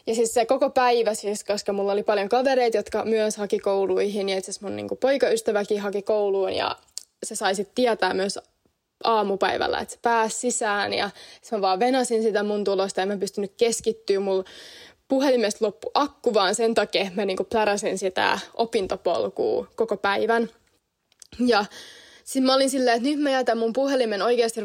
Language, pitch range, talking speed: Finnish, 205-235 Hz, 175 wpm